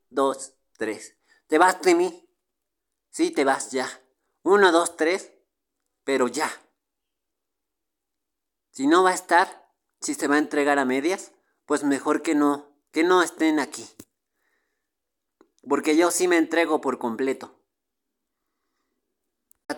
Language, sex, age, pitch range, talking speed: Spanish, male, 40-59, 135-180 Hz, 135 wpm